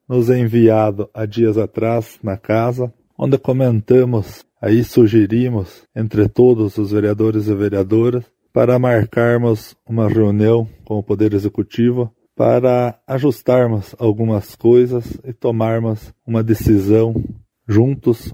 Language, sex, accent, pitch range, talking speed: Portuguese, male, Brazilian, 110-120 Hz, 110 wpm